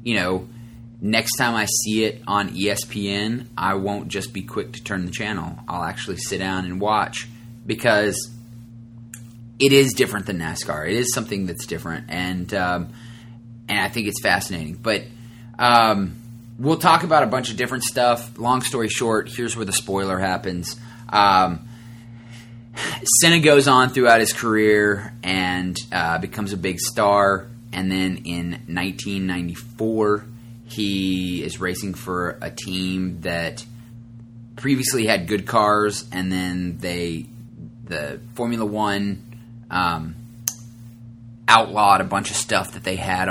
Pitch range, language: 95-115 Hz, English